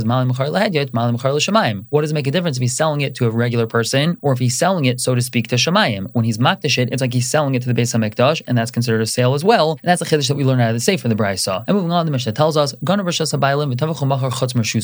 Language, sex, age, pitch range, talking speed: English, male, 20-39, 125-160 Hz, 265 wpm